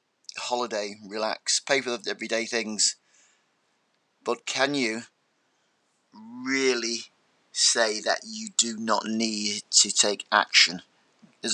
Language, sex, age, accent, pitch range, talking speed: English, male, 30-49, British, 105-120 Hz, 110 wpm